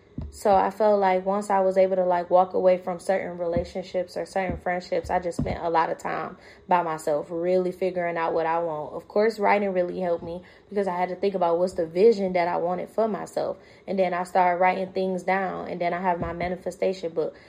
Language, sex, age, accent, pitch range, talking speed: English, female, 20-39, American, 175-195 Hz, 230 wpm